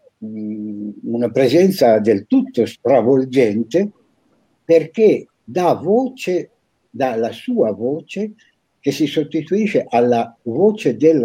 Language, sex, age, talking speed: Italian, male, 60-79, 95 wpm